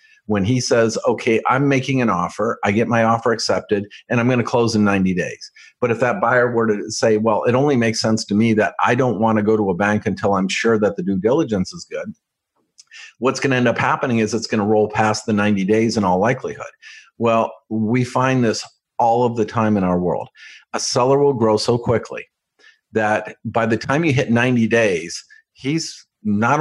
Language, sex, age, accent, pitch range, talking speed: English, male, 50-69, American, 105-125 Hz, 220 wpm